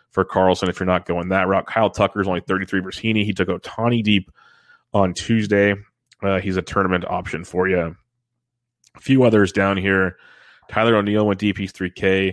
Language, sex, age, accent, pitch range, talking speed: English, male, 30-49, American, 90-105 Hz, 190 wpm